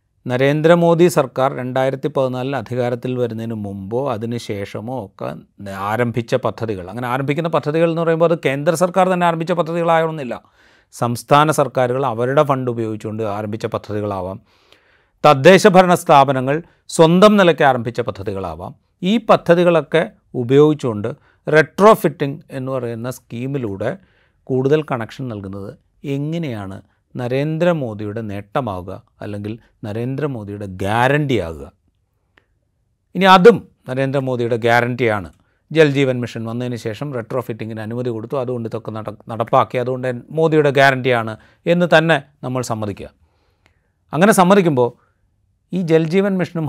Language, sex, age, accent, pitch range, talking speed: Malayalam, male, 30-49, native, 110-150 Hz, 100 wpm